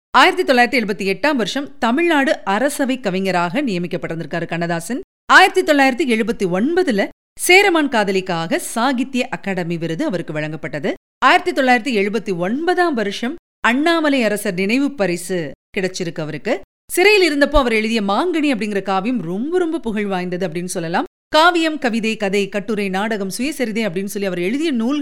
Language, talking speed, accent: Tamil, 125 wpm, native